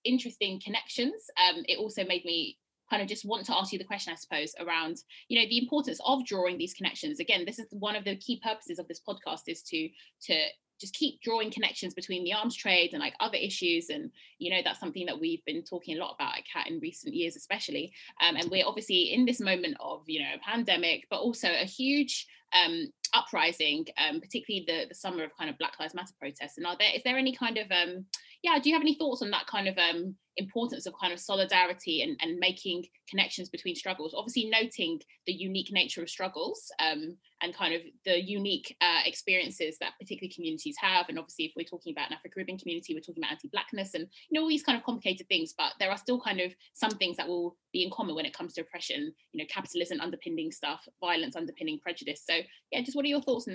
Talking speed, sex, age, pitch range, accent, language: 235 wpm, female, 20-39, 175-280 Hz, British, English